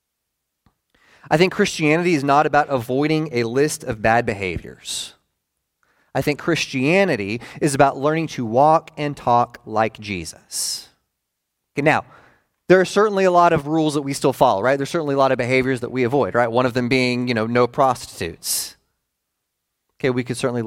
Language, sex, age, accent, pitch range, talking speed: English, male, 30-49, American, 125-160 Hz, 170 wpm